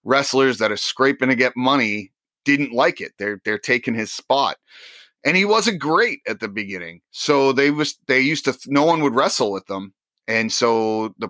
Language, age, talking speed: English, 30-49, 195 wpm